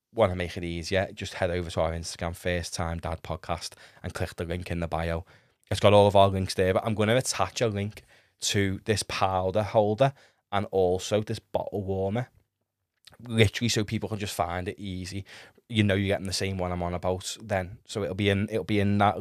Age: 20-39